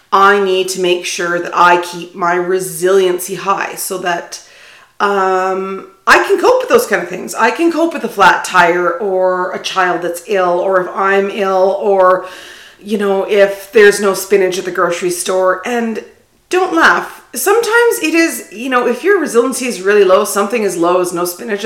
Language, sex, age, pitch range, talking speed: English, female, 40-59, 185-260 Hz, 190 wpm